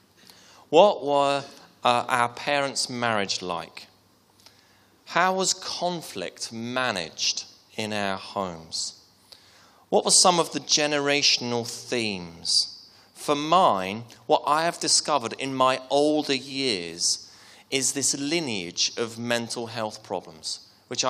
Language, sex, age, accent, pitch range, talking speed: English, male, 30-49, British, 100-135 Hz, 110 wpm